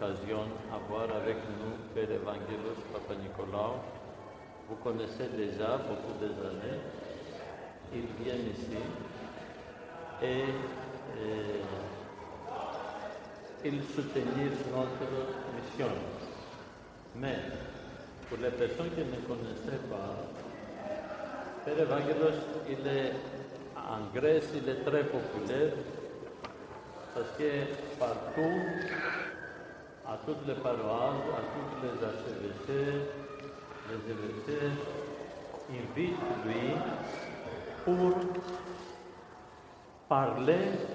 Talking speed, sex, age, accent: 80 wpm, male, 60-79, Turkish